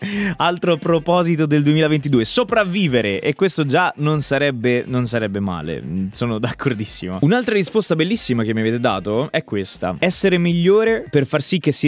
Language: Italian